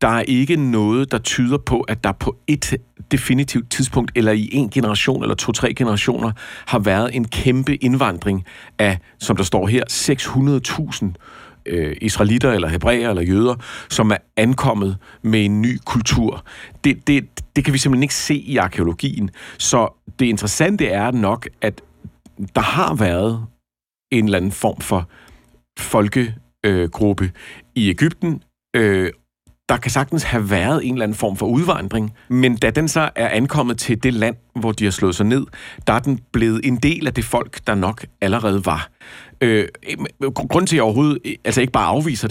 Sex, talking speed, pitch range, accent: male, 175 wpm, 105-135 Hz, native